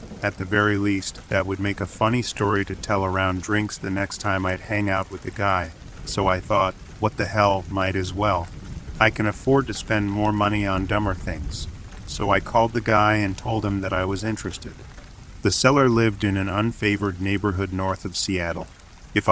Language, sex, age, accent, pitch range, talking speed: English, male, 40-59, American, 95-105 Hz, 200 wpm